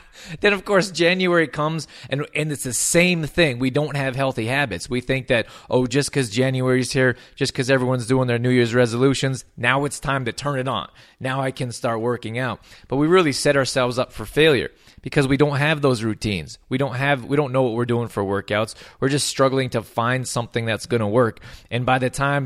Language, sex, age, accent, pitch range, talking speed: English, male, 20-39, American, 120-140 Hz, 220 wpm